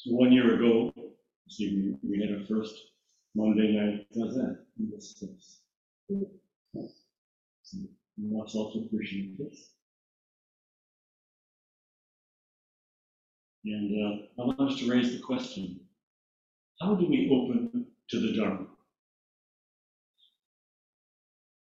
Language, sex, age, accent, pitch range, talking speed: English, male, 50-69, American, 105-135 Hz, 90 wpm